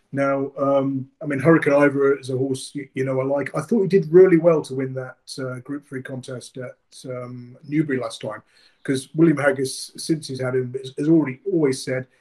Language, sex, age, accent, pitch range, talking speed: English, male, 30-49, British, 130-145 Hz, 210 wpm